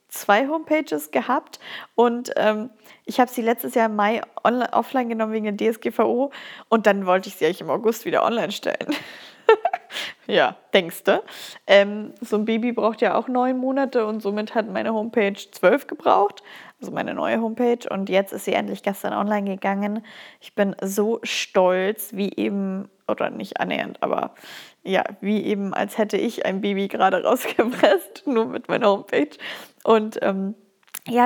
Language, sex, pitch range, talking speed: German, female, 195-225 Hz, 165 wpm